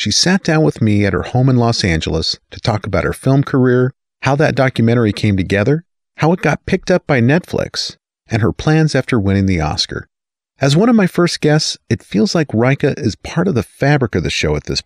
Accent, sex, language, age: American, male, English, 40-59